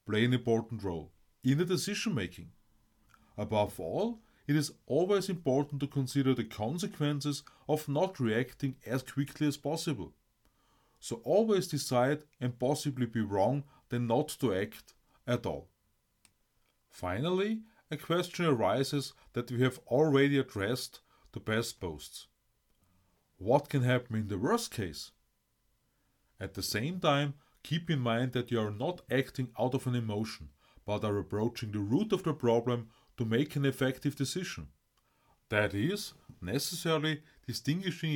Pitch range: 110-150 Hz